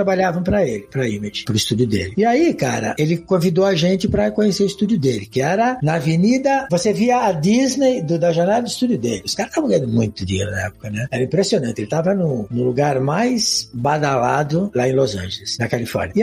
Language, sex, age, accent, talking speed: Portuguese, male, 60-79, Brazilian, 220 wpm